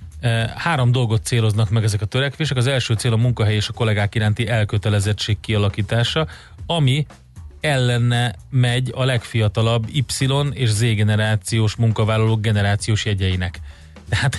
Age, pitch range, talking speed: 30-49, 105-120 Hz, 130 wpm